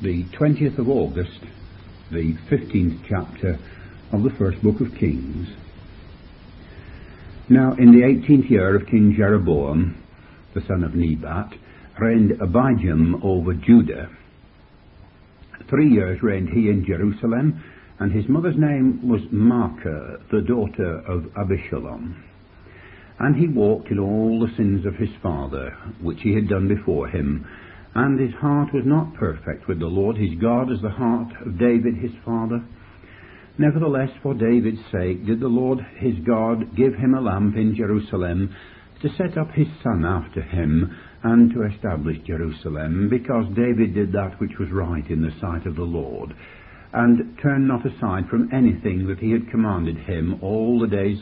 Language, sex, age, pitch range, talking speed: English, male, 60-79, 85-115 Hz, 155 wpm